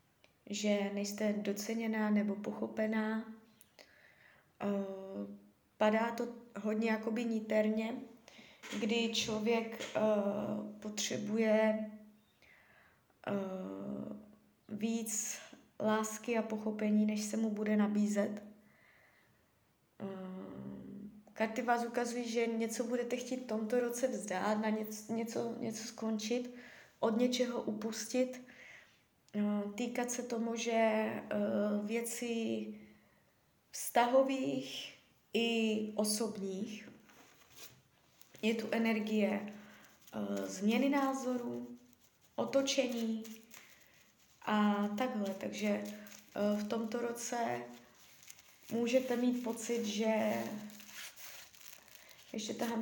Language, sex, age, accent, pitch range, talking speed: Czech, female, 20-39, native, 205-235 Hz, 80 wpm